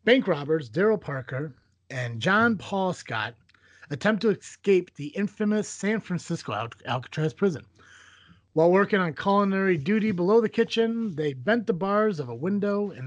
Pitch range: 130-190 Hz